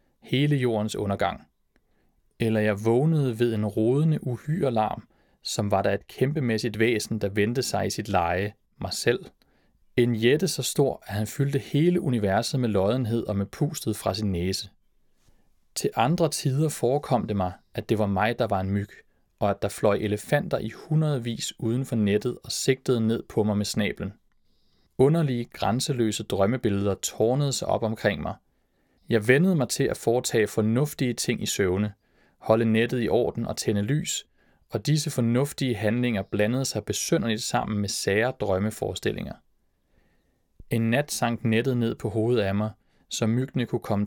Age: 30-49